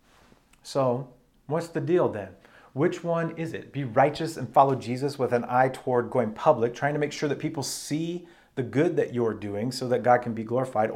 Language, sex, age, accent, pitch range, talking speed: English, male, 30-49, American, 120-150 Hz, 210 wpm